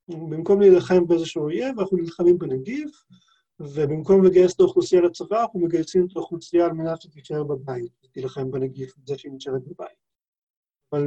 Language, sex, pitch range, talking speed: Hebrew, male, 150-195 Hz, 145 wpm